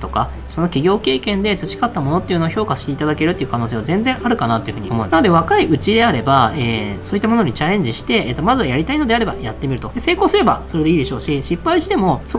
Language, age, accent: Japanese, 20-39, native